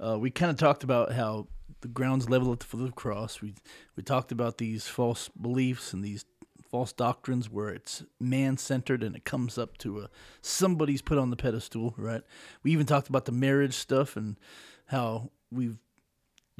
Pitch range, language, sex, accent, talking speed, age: 115-140 Hz, English, male, American, 185 wpm, 30-49